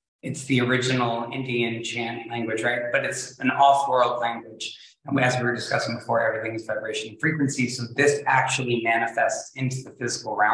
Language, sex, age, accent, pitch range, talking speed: English, male, 30-49, American, 120-145 Hz, 170 wpm